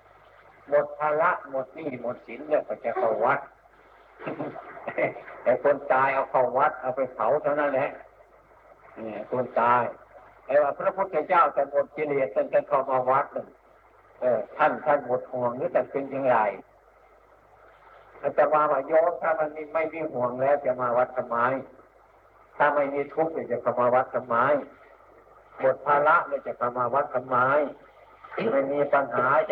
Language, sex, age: Thai, male, 60-79